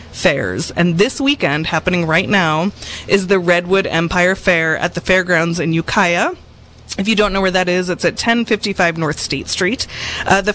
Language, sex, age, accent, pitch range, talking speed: English, female, 20-39, American, 175-225 Hz, 180 wpm